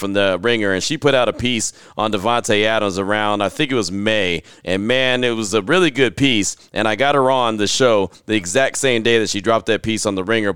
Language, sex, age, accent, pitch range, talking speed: English, male, 30-49, American, 110-160 Hz, 255 wpm